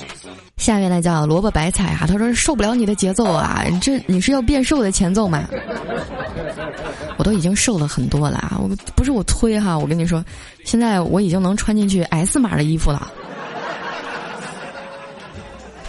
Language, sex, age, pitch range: Chinese, female, 20-39, 165-220 Hz